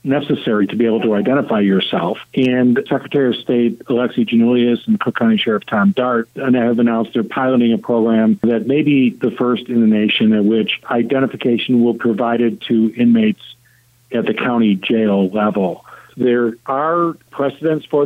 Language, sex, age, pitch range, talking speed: English, male, 50-69, 115-140 Hz, 165 wpm